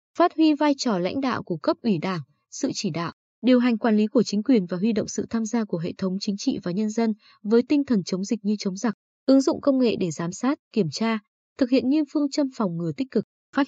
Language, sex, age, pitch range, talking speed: Vietnamese, female, 20-39, 200-255 Hz, 270 wpm